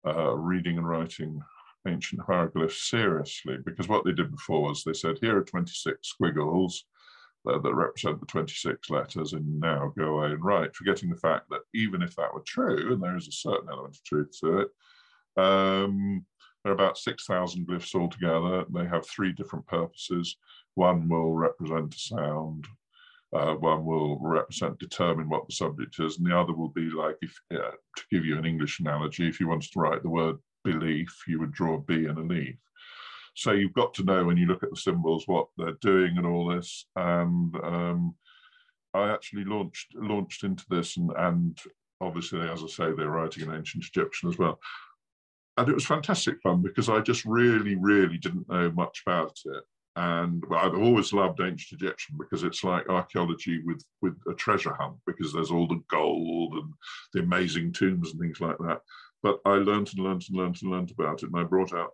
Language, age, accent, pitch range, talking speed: English, 50-69, British, 80-95 Hz, 195 wpm